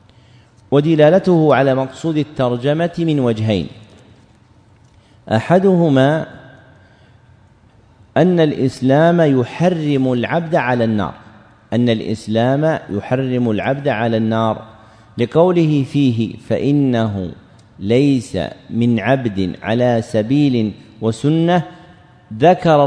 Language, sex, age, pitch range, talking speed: Arabic, male, 50-69, 115-150 Hz, 75 wpm